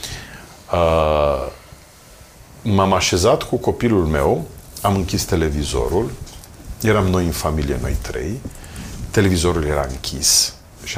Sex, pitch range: male, 85-130 Hz